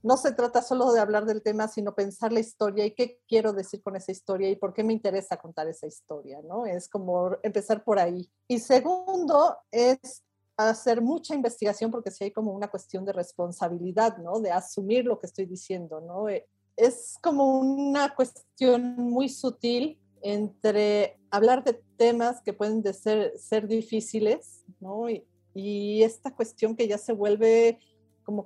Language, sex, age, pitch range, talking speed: Spanish, female, 40-59, 195-240 Hz, 175 wpm